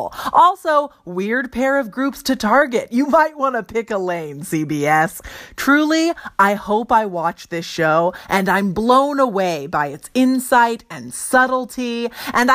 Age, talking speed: 30-49, 155 wpm